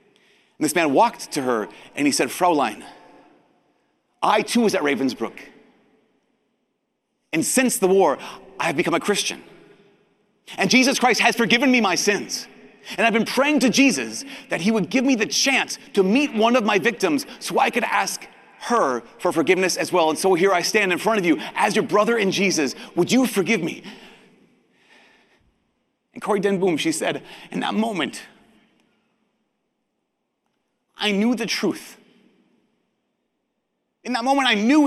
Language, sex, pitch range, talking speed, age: English, male, 190-255 Hz, 165 wpm, 30-49